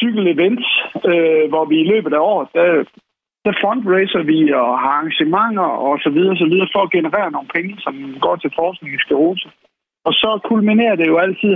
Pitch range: 150-210 Hz